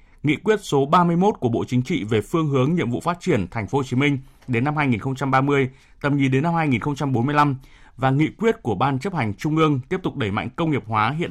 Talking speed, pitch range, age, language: 240 wpm, 125-150 Hz, 20-39, Vietnamese